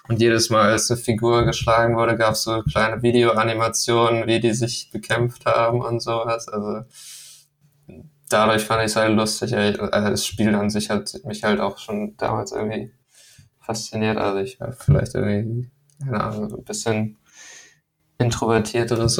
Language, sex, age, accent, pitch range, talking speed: German, male, 20-39, German, 110-120 Hz, 145 wpm